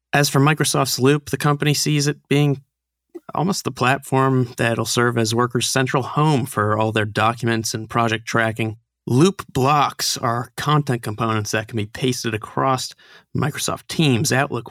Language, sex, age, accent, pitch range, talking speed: English, male, 30-49, American, 110-135 Hz, 155 wpm